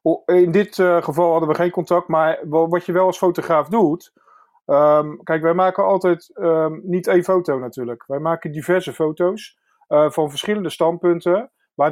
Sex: male